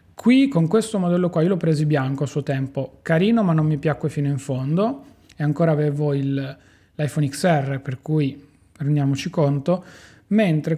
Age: 30-49